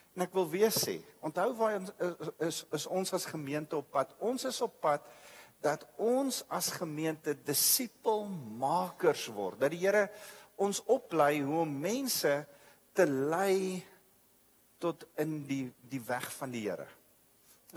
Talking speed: 140 wpm